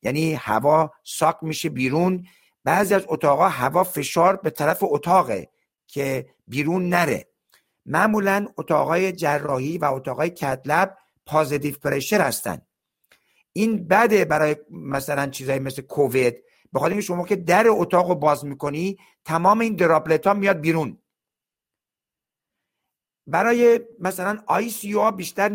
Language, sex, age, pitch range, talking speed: Persian, male, 50-69, 150-195 Hz, 120 wpm